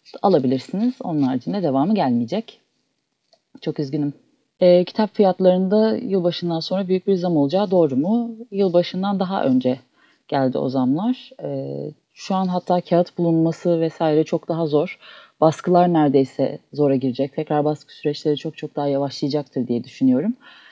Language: Turkish